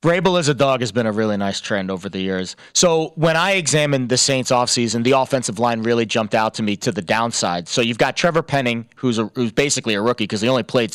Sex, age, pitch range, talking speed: male, 30-49, 125-155 Hz, 245 wpm